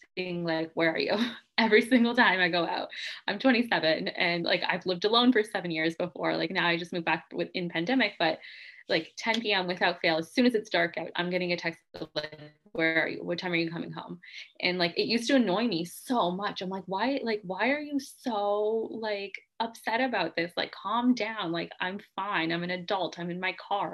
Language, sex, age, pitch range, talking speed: English, female, 20-39, 175-225 Hz, 225 wpm